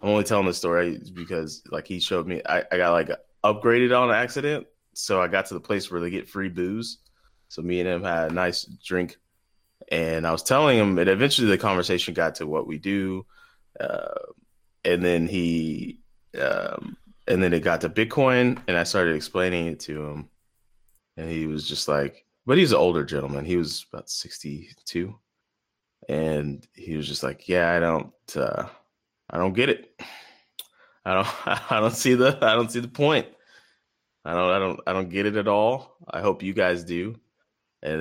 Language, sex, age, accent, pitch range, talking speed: English, male, 20-39, American, 80-105 Hz, 195 wpm